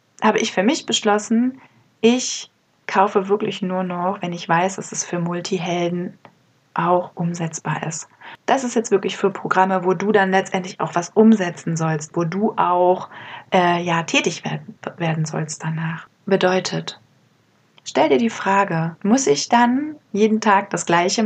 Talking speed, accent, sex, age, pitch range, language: 150 wpm, German, female, 20-39, 170-205 Hz, German